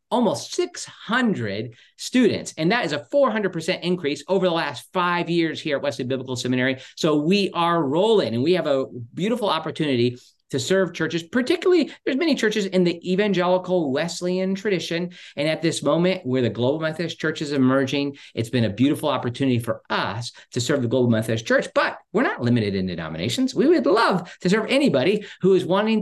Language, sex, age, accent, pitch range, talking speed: English, male, 50-69, American, 125-175 Hz, 185 wpm